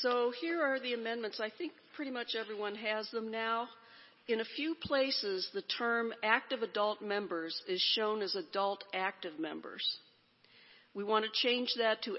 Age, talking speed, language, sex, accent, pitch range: 50-69, 165 wpm, English, female, American, 185-225 Hz